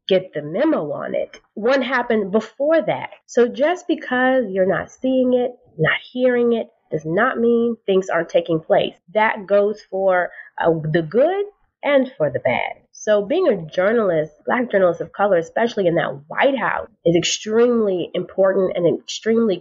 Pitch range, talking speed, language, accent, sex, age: 175-215 Hz, 165 wpm, English, American, female, 20-39